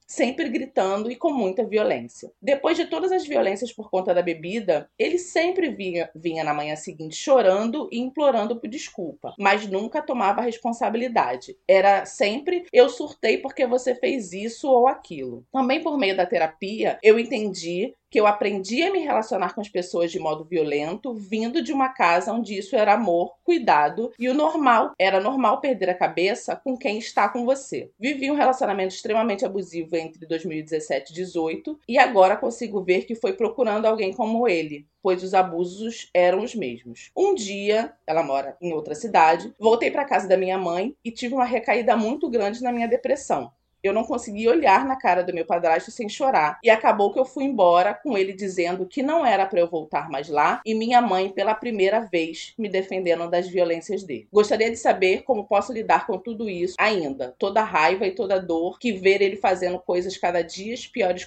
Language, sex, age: Portuguese, female, 20-39